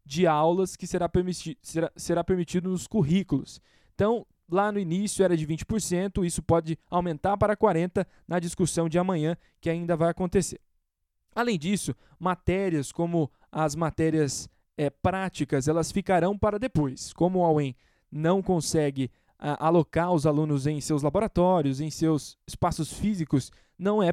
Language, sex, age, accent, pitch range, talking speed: Portuguese, male, 10-29, Brazilian, 155-185 Hz, 145 wpm